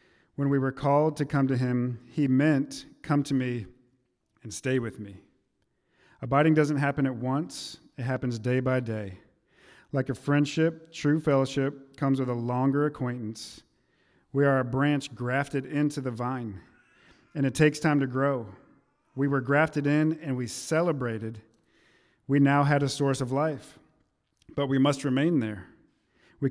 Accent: American